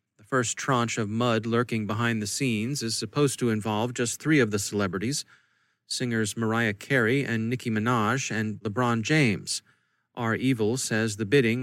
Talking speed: 160 wpm